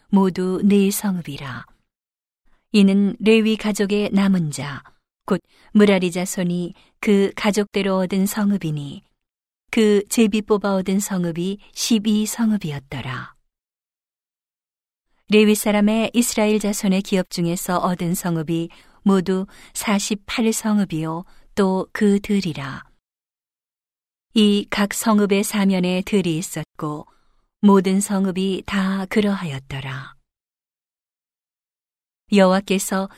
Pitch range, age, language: 175-205 Hz, 40-59, Korean